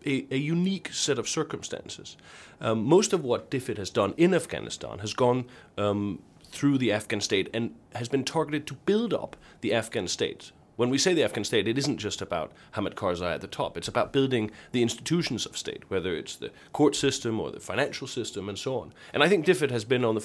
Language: English